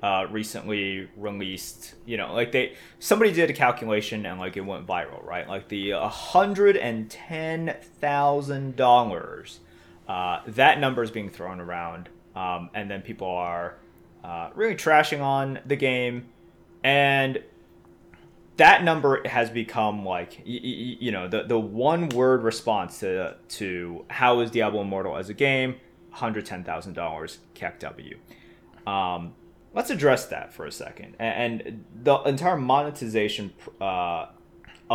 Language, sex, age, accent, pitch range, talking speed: English, male, 20-39, American, 95-140 Hz, 150 wpm